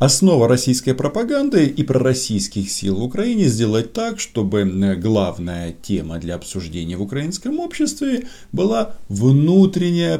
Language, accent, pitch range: Russian, native, 100-160 Hz